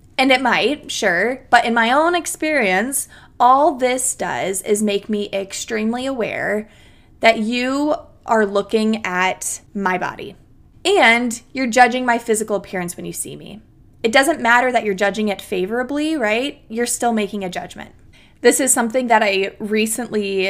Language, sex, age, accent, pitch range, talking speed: English, female, 20-39, American, 205-295 Hz, 160 wpm